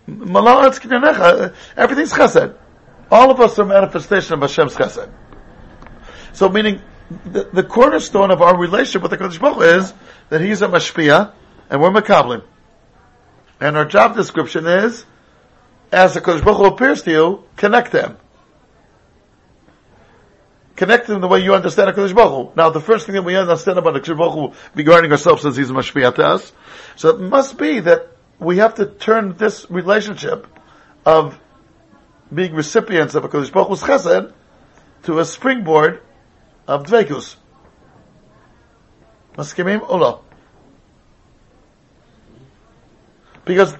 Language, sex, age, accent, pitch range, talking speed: English, male, 50-69, American, 160-215 Hz, 130 wpm